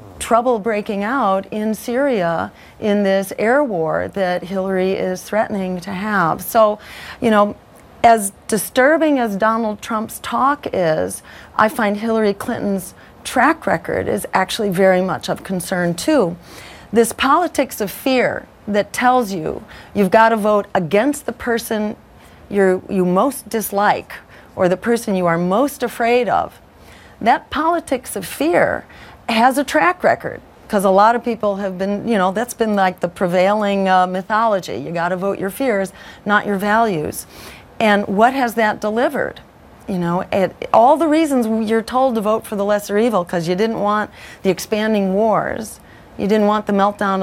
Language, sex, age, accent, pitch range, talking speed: English, female, 40-59, American, 190-230 Hz, 160 wpm